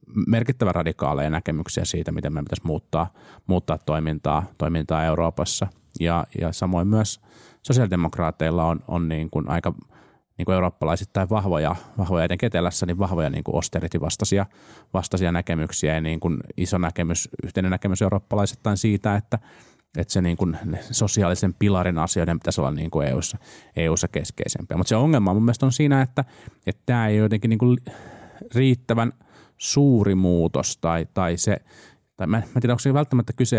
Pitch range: 85-110 Hz